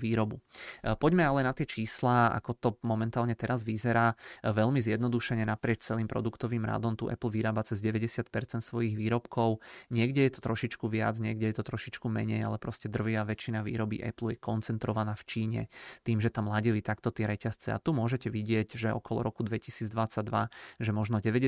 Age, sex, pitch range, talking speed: 20-39, male, 110-115 Hz, 170 wpm